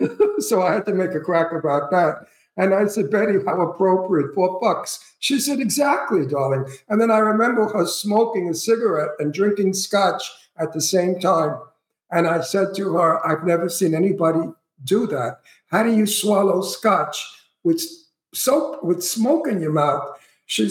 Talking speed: 170 wpm